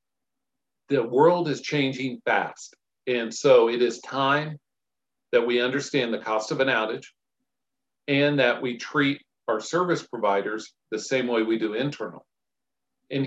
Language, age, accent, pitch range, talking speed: English, 50-69, American, 115-145 Hz, 145 wpm